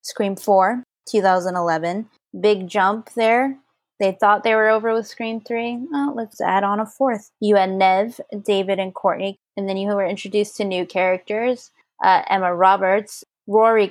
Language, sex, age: English, female, 20-39